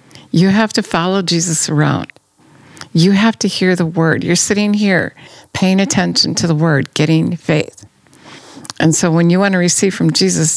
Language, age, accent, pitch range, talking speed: English, 50-69, American, 150-180 Hz, 175 wpm